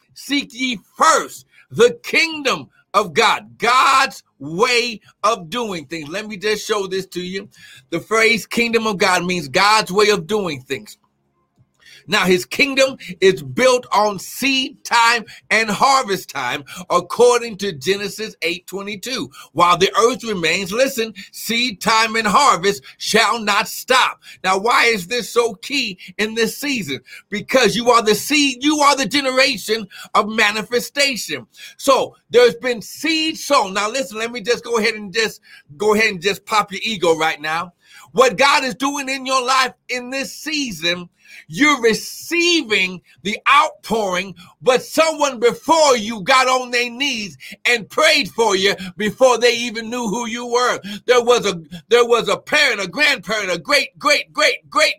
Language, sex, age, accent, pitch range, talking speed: English, male, 60-79, American, 200-265 Hz, 160 wpm